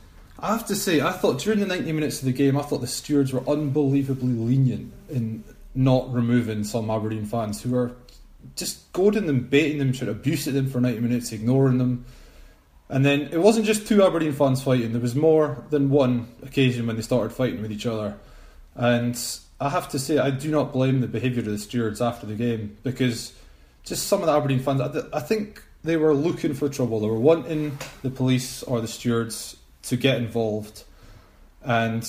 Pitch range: 115-145 Hz